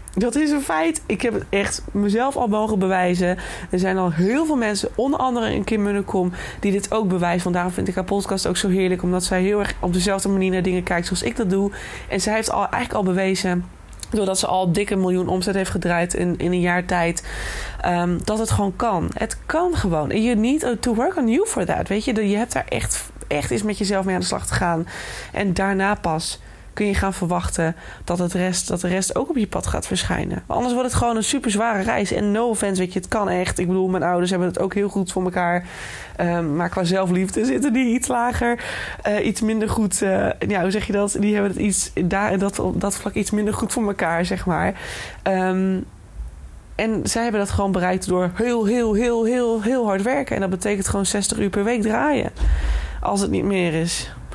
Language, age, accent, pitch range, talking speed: Dutch, 20-39, Dutch, 180-220 Hz, 235 wpm